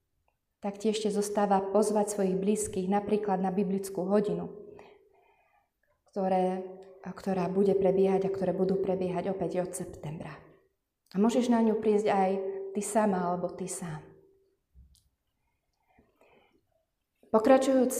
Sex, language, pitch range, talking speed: female, Slovak, 185-225 Hz, 115 wpm